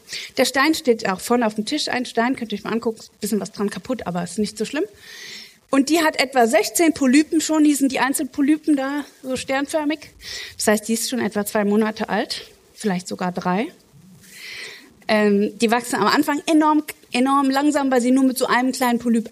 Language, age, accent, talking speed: German, 30-49, German, 210 wpm